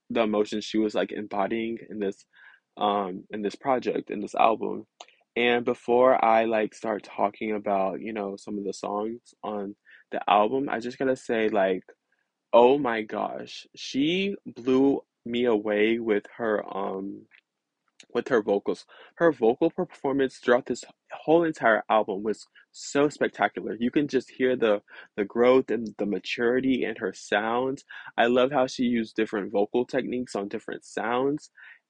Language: English